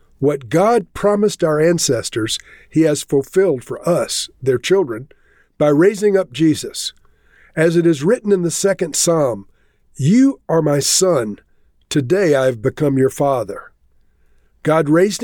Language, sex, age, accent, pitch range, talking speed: English, male, 50-69, American, 145-190 Hz, 140 wpm